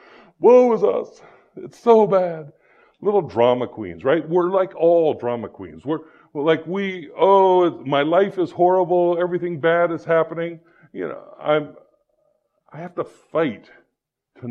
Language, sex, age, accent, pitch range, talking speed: English, female, 50-69, American, 110-180 Hz, 150 wpm